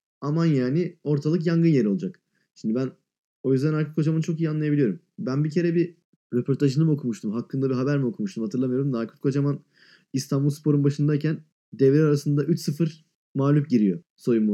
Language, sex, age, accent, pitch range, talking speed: Turkish, male, 20-39, native, 130-180 Hz, 160 wpm